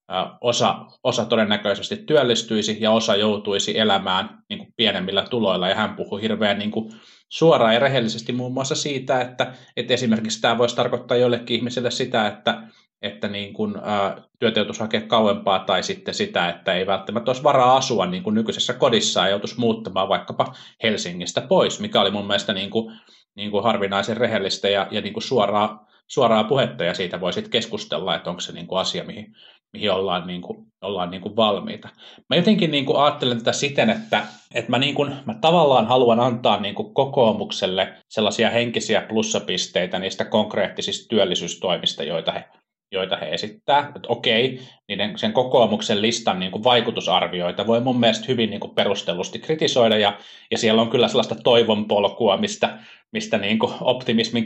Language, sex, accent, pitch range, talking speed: Finnish, male, native, 105-125 Hz, 165 wpm